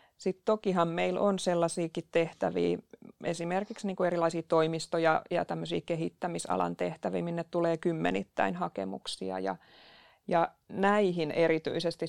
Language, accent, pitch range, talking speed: Finnish, native, 160-185 Hz, 115 wpm